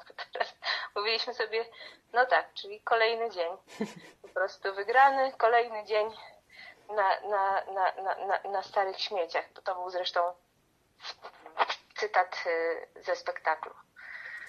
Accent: native